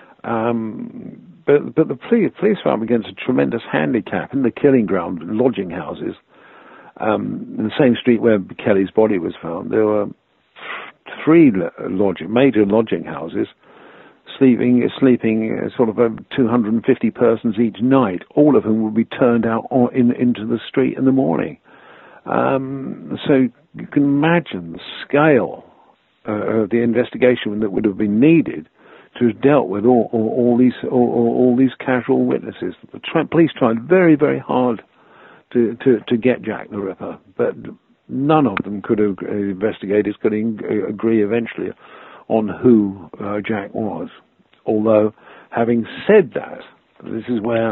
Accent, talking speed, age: British, 155 wpm, 50-69